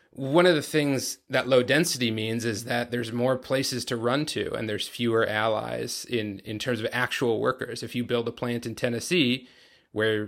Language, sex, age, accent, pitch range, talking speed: English, male, 30-49, American, 105-130 Hz, 200 wpm